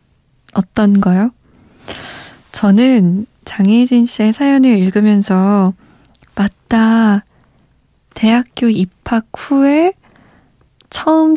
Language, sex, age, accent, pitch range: Korean, female, 20-39, native, 195-240 Hz